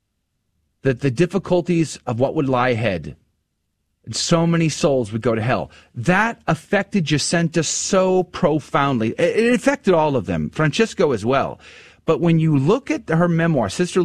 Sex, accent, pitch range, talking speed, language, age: male, American, 115-175 Hz, 155 wpm, English, 30-49